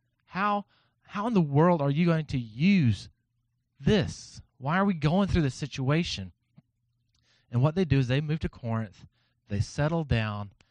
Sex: male